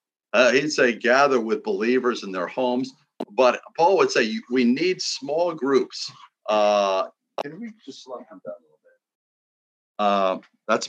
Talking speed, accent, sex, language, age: 160 wpm, American, male, English, 50-69